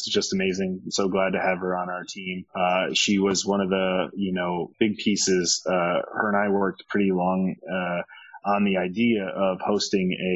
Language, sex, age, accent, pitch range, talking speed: English, male, 30-49, Canadian, 95-110 Hz, 195 wpm